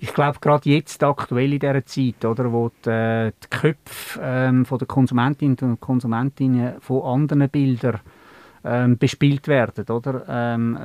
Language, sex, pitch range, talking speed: German, male, 115-135 Hz, 150 wpm